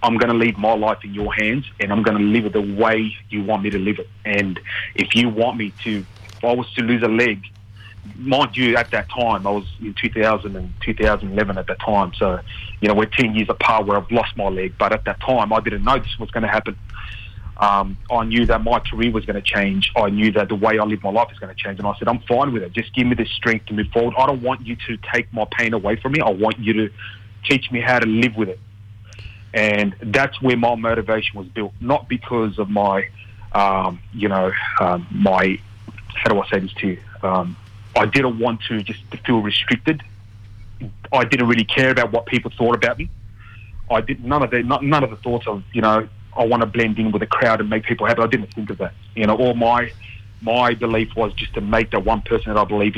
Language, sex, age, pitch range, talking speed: English, male, 30-49, 100-115 Hz, 250 wpm